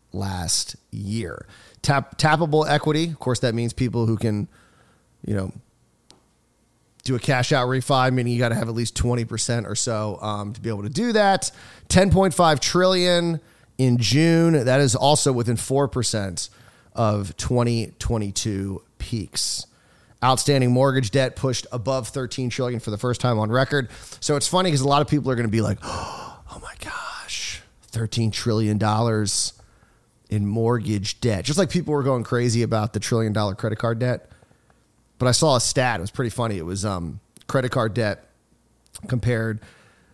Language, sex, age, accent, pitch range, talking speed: English, male, 30-49, American, 110-135 Hz, 165 wpm